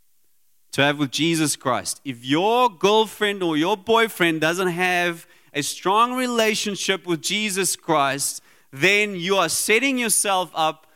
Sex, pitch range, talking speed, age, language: male, 175-220 Hz, 130 wpm, 30-49, English